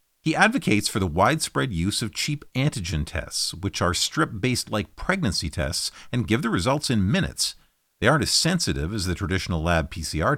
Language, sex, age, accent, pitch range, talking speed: English, male, 50-69, American, 85-130 Hz, 180 wpm